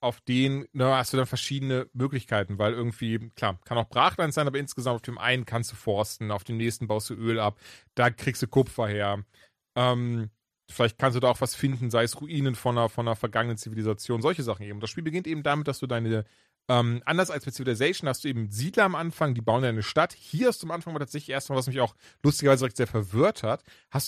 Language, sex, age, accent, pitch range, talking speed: German, male, 30-49, German, 120-150 Hz, 230 wpm